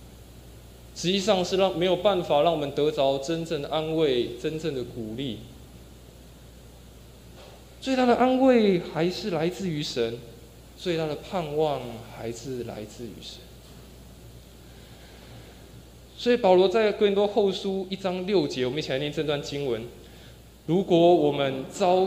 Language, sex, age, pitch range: Chinese, male, 20-39, 125-195 Hz